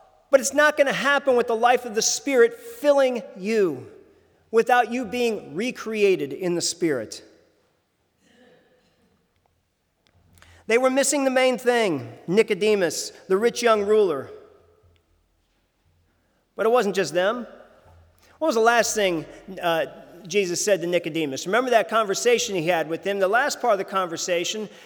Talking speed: 145 wpm